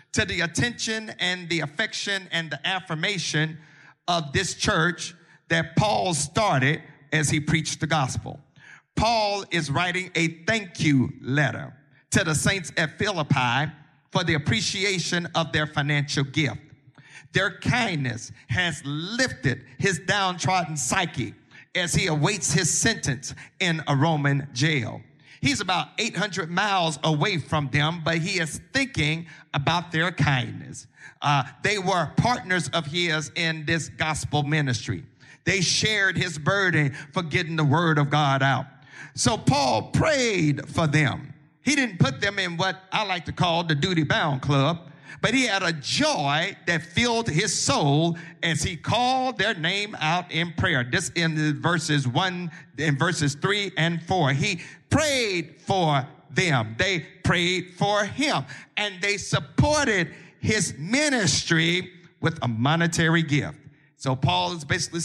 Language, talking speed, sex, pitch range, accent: English, 145 wpm, male, 145-185 Hz, American